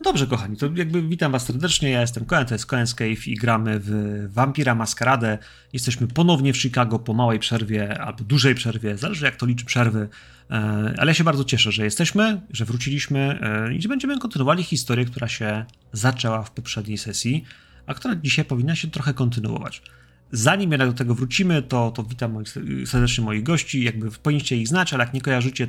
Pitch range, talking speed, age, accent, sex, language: 115-155 Hz, 185 wpm, 30-49, native, male, Polish